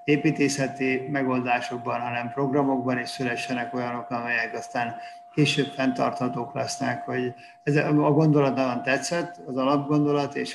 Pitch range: 125-150 Hz